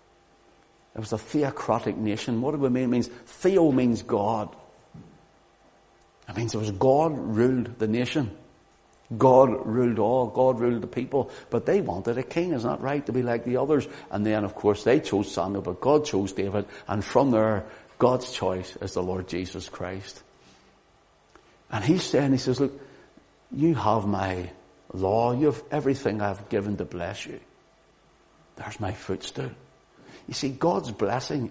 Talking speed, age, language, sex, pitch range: 170 wpm, 60-79, English, male, 100-130 Hz